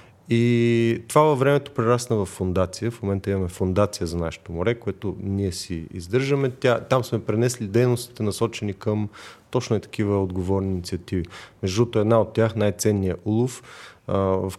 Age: 30-49